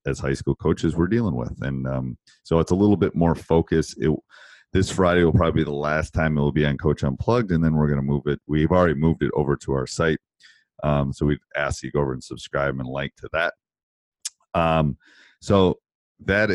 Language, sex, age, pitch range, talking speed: English, male, 30-49, 70-85 Hz, 230 wpm